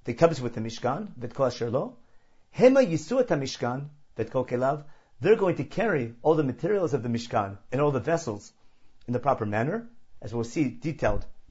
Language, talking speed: English, 165 wpm